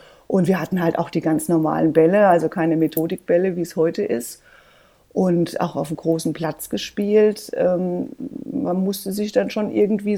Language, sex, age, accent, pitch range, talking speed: German, female, 40-59, German, 165-210 Hz, 175 wpm